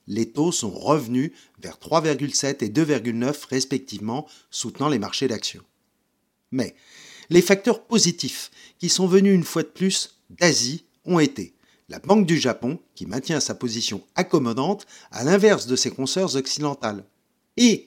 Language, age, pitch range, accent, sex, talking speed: French, 50-69, 125-175 Hz, French, male, 145 wpm